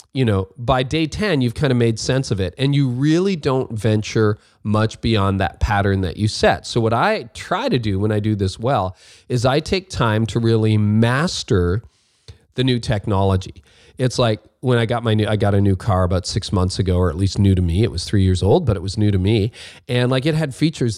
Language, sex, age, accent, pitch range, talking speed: English, male, 30-49, American, 100-125 Hz, 235 wpm